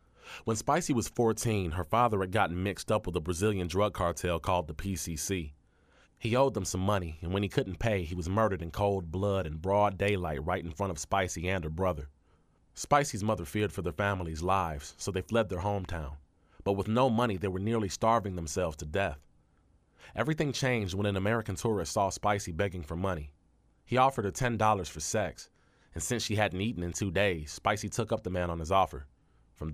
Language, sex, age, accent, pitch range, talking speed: English, male, 30-49, American, 85-110 Hz, 205 wpm